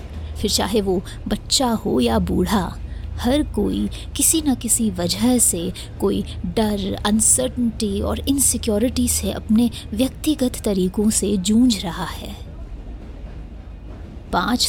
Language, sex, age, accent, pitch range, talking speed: Hindi, female, 20-39, native, 185-235 Hz, 115 wpm